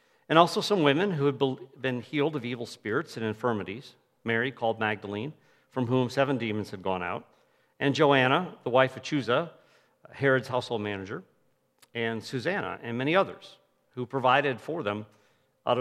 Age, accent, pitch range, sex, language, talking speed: 50-69, American, 115-145 Hz, male, English, 160 wpm